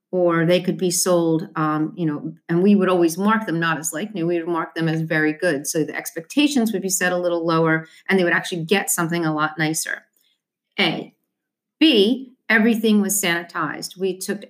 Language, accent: English, American